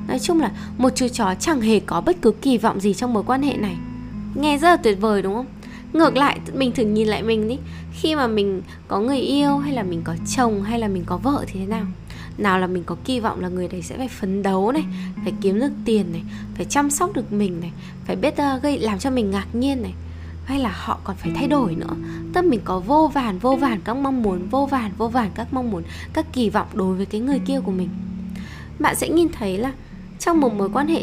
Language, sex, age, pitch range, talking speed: Vietnamese, female, 10-29, 190-275 Hz, 255 wpm